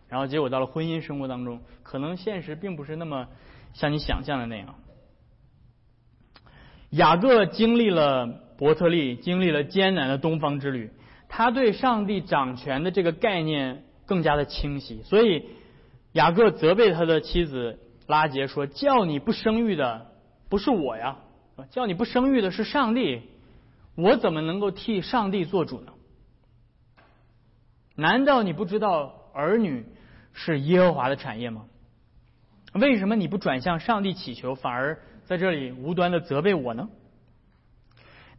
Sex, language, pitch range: male, Chinese, 130-200 Hz